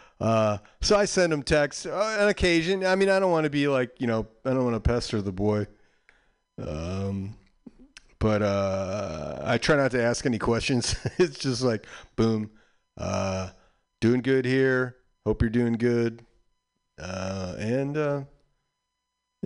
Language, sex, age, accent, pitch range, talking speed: English, male, 40-59, American, 100-130 Hz, 155 wpm